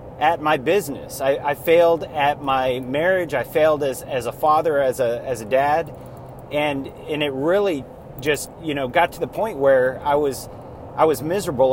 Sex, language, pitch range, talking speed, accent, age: male, English, 130-165 Hz, 190 wpm, American, 30-49